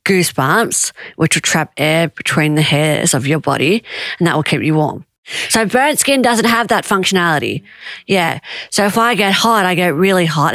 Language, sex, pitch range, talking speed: English, female, 165-200 Hz, 195 wpm